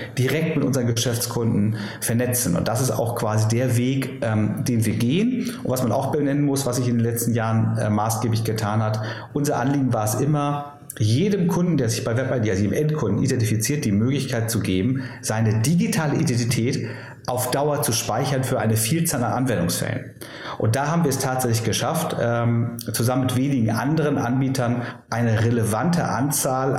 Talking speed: 175 wpm